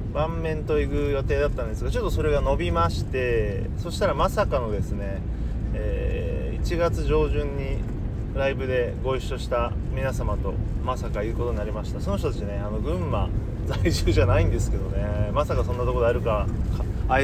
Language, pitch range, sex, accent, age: Japanese, 80-110 Hz, male, native, 30-49